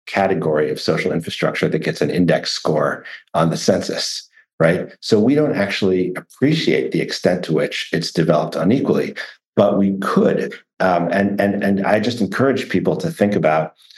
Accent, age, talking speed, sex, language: American, 50-69, 165 wpm, male, English